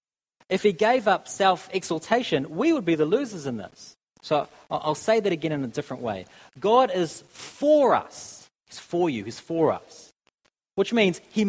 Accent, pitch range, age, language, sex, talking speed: Australian, 125-175 Hz, 40-59, English, male, 180 wpm